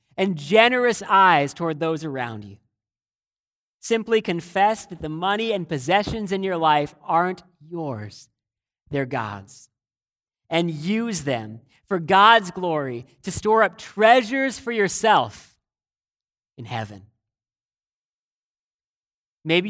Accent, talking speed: American, 110 wpm